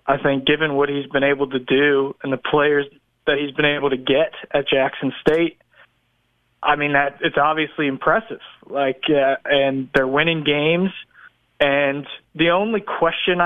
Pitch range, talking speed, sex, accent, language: 135-175 Hz, 165 wpm, male, American, English